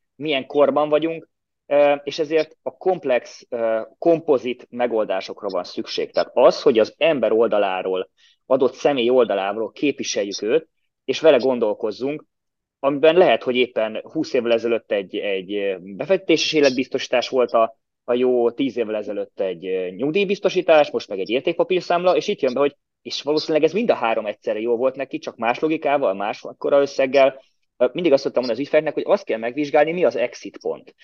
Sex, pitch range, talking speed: male, 120-160 Hz, 160 wpm